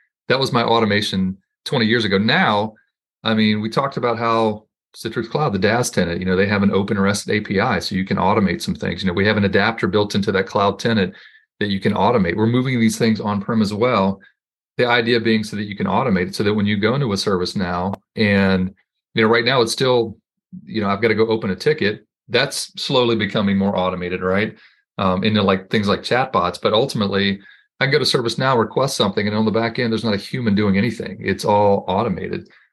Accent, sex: American, male